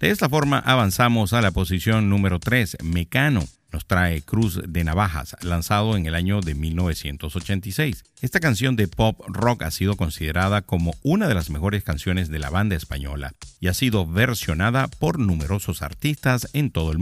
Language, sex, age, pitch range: Spanish, male, 50-69, 90-120 Hz